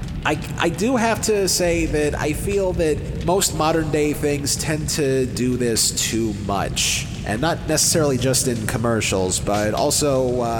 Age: 30-49